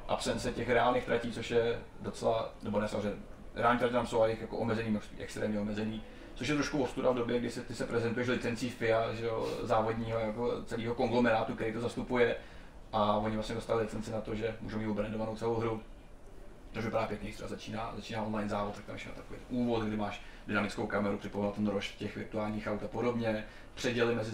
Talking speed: 195 wpm